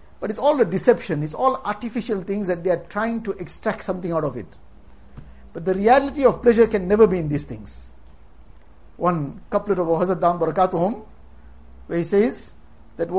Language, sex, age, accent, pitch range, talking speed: English, male, 60-79, Indian, 155-230 Hz, 170 wpm